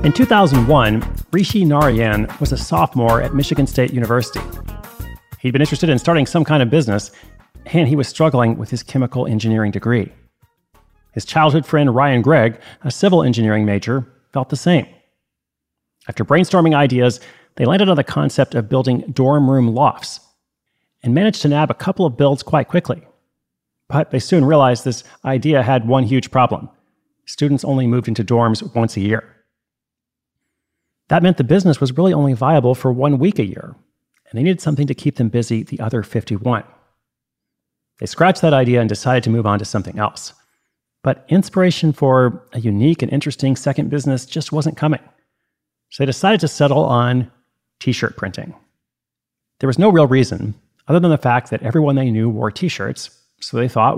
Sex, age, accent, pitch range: male, 40-59, American, 120-150 Hz